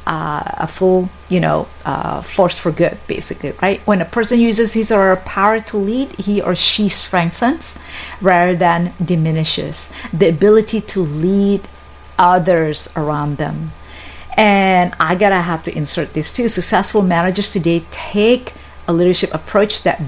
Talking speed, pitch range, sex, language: 150 wpm, 155-195 Hz, female, English